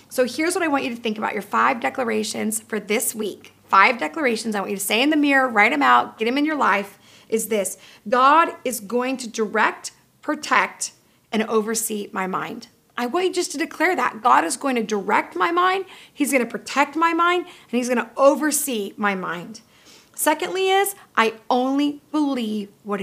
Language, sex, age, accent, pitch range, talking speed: English, female, 40-59, American, 220-280 Hz, 205 wpm